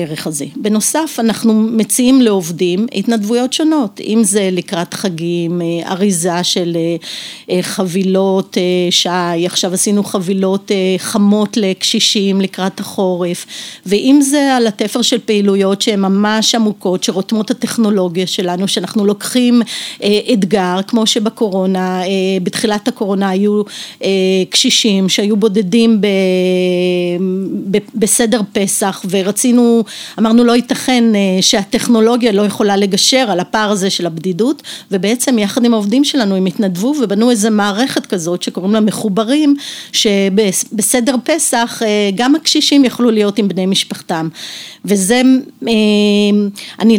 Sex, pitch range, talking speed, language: female, 190-235 Hz, 110 wpm, Hebrew